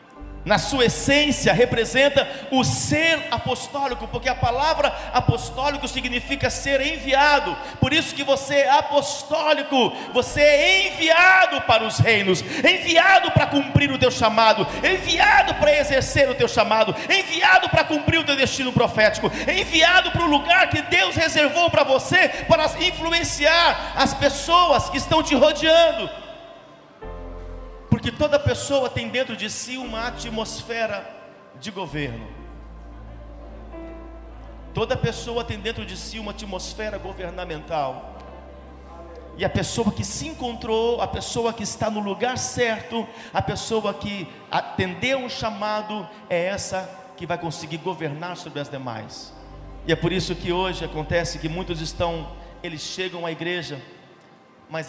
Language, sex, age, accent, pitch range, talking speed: Portuguese, male, 50-69, Brazilian, 175-290 Hz, 135 wpm